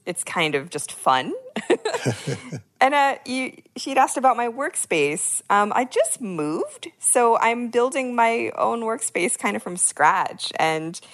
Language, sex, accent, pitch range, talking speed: English, female, American, 155-250 Hz, 145 wpm